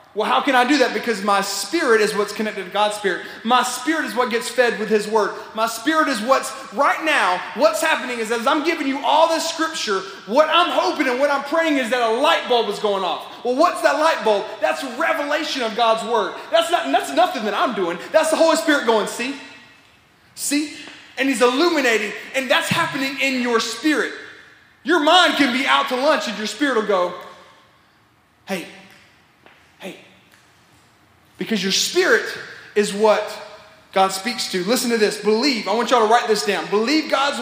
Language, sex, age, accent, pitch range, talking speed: English, male, 30-49, American, 215-300 Hz, 195 wpm